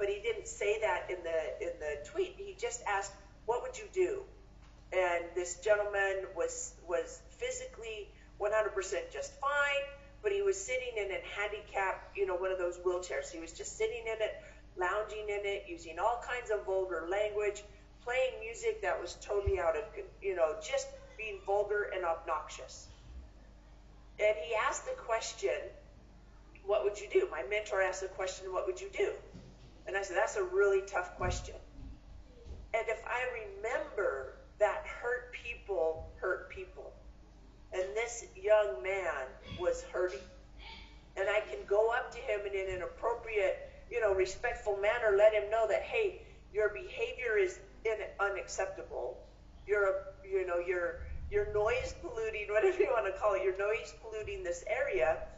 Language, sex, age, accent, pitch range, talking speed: English, female, 50-69, American, 195-315 Hz, 165 wpm